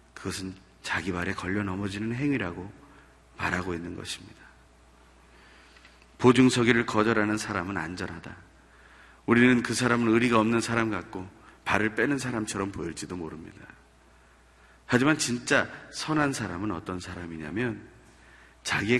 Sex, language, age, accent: male, Korean, 40-59, native